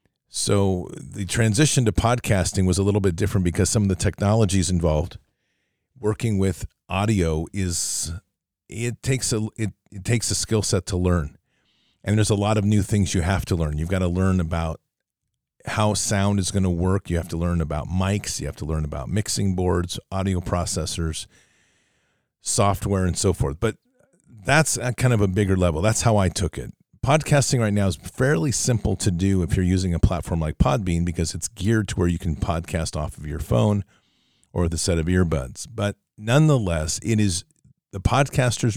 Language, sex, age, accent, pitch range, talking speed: English, male, 40-59, American, 90-110 Hz, 190 wpm